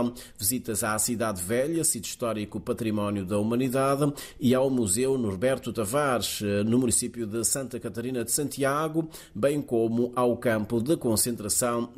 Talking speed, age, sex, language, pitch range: 135 wpm, 30-49, male, Portuguese, 115-135 Hz